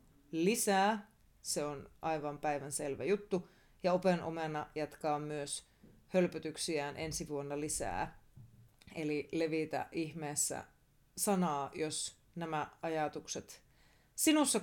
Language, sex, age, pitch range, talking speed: Finnish, female, 30-49, 150-190 Hz, 95 wpm